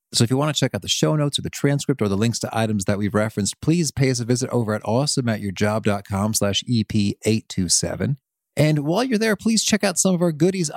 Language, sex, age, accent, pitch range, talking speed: English, male, 30-49, American, 100-140 Hz, 235 wpm